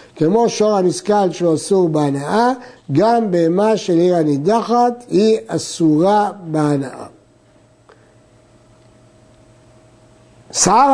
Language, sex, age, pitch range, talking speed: Hebrew, male, 60-79, 135-220 Hz, 80 wpm